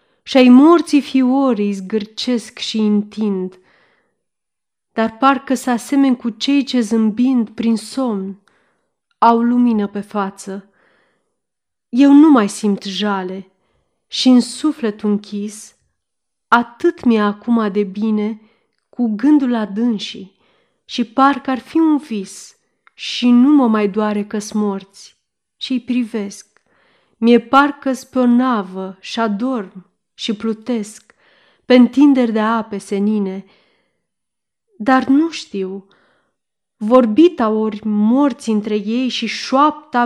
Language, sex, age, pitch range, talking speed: Romanian, female, 30-49, 210-255 Hz, 115 wpm